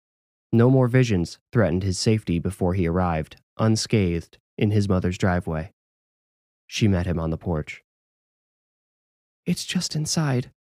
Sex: male